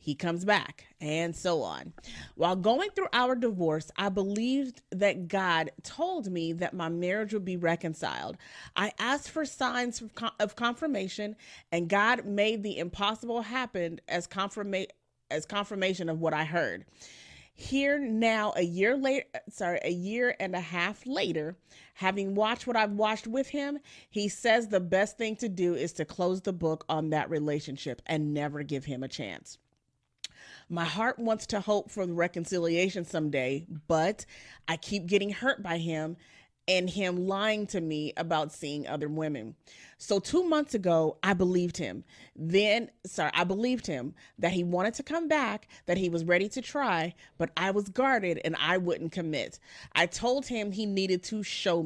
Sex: female